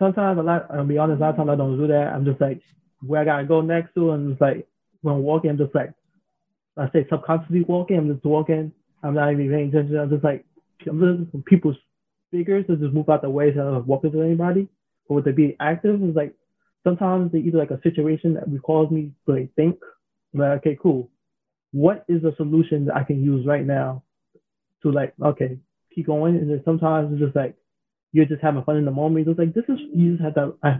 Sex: male